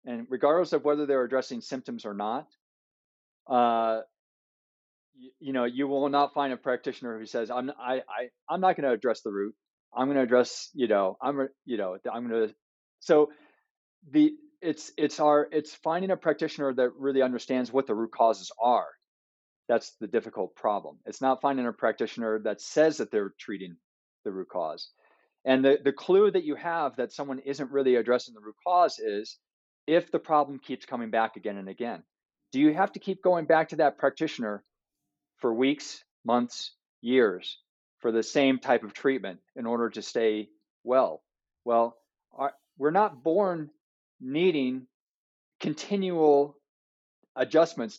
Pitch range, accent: 115-150 Hz, American